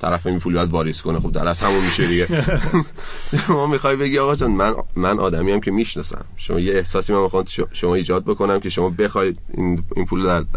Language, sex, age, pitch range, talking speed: Persian, male, 30-49, 80-95 Hz, 200 wpm